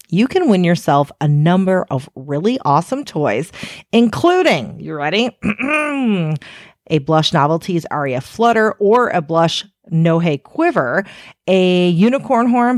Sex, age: female, 40-59